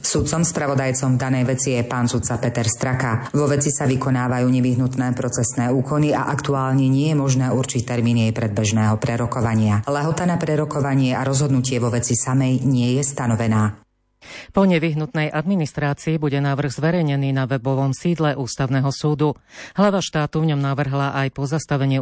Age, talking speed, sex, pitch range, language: 40-59, 155 wpm, female, 135-155 Hz, Slovak